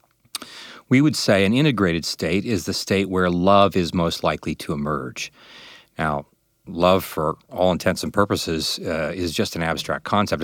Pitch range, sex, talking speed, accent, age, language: 90-115 Hz, male, 165 wpm, American, 40-59, English